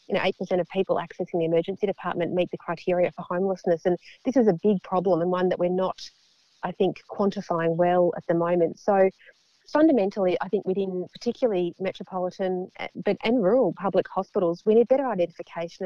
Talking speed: 180 wpm